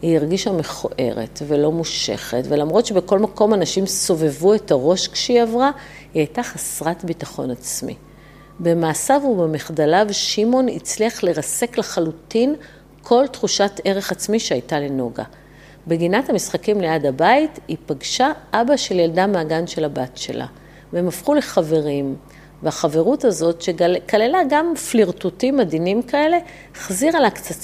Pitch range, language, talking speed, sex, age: 155-220 Hz, Hebrew, 125 wpm, female, 50-69